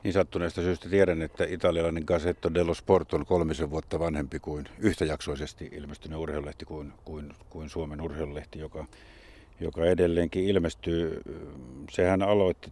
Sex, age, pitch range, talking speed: male, 50-69, 75-90 Hz, 130 wpm